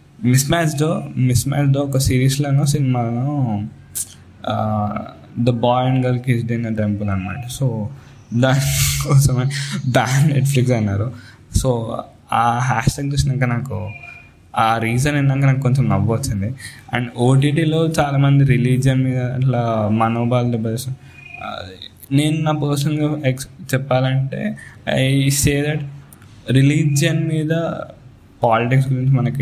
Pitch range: 115-140 Hz